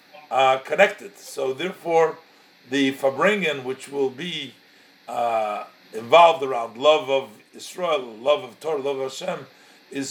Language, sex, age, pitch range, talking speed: English, male, 50-69, 140-180 Hz, 130 wpm